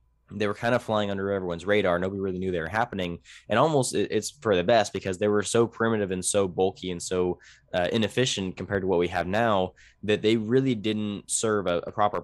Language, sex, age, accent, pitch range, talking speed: English, male, 10-29, American, 90-105 Hz, 225 wpm